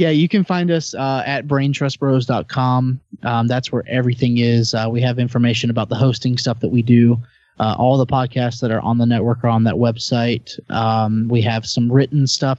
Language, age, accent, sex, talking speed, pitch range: English, 20-39, American, male, 205 wpm, 115-130 Hz